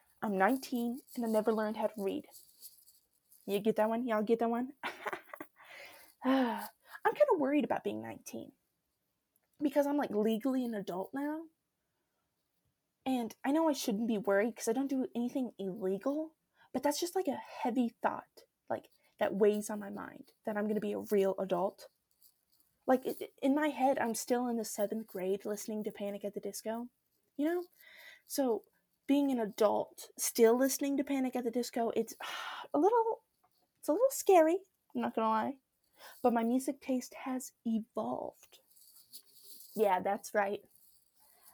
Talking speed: 165 wpm